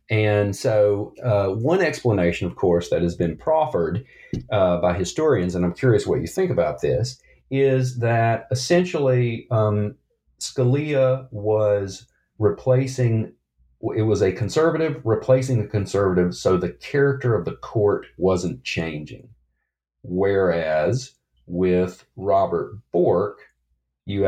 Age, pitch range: 40-59, 90-130 Hz